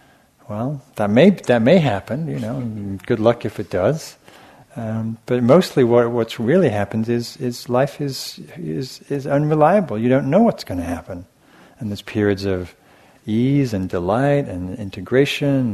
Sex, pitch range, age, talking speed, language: male, 100-130 Hz, 50-69, 170 wpm, English